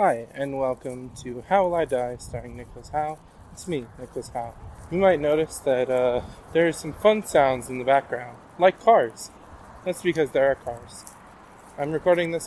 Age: 20-39